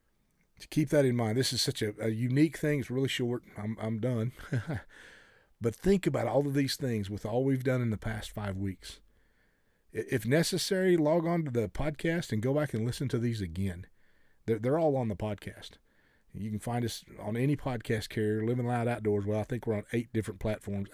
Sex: male